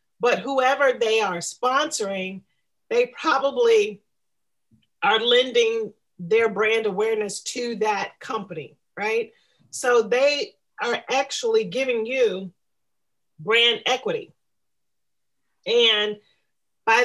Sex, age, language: female, 40-59, English